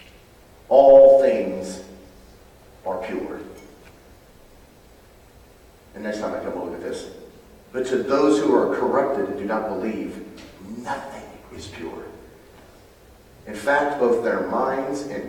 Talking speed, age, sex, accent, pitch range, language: 120 wpm, 40-59, male, American, 100-125 Hz, English